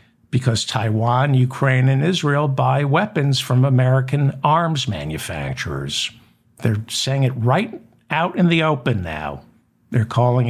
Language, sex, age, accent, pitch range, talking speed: English, male, 60-79, American, 115-145 Hz, 125 wpm